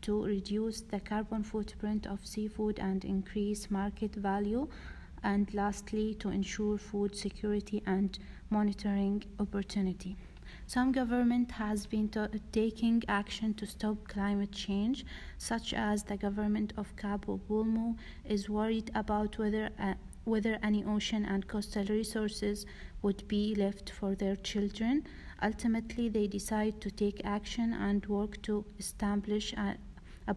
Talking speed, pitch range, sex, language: 130 wpm, 200-215 Hz, female, English